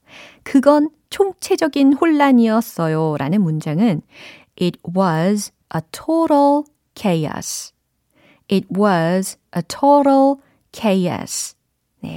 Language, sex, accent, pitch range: Korean, female, native, 165-270 Hz